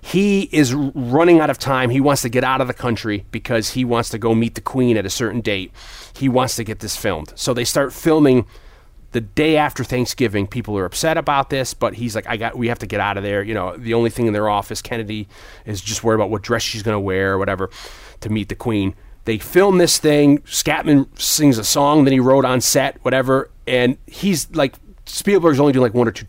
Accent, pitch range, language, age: American, 105-140 Hz, English, 30-49